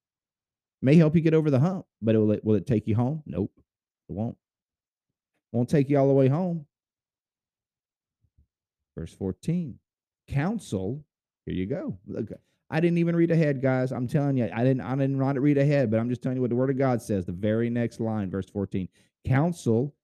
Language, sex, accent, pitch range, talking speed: English, male, American, 100-140 Hz, 205 wpm